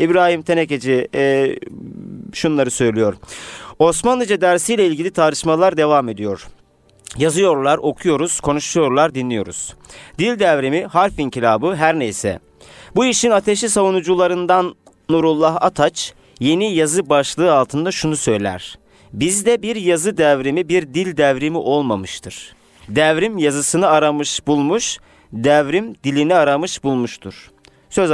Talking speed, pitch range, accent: 105 wpm, 125-175 Hz, native